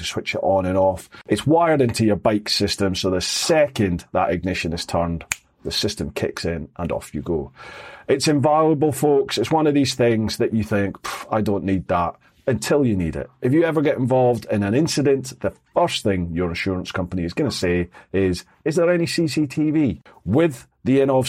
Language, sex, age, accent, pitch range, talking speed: English, male, 40-59, British, 90-130 Hz, 200 wpm